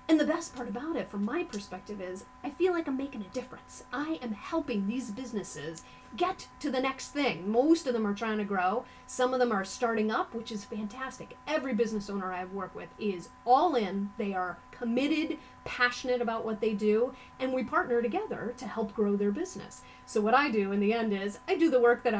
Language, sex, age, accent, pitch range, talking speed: English, female, 30-49, American, 200-245 Hz, 220 wpm